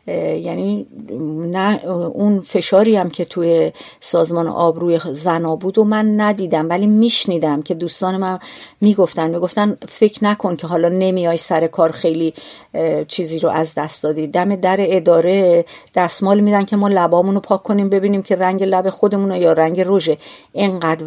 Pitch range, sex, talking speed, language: 165-205 Hz, female, 155 wpm, Persian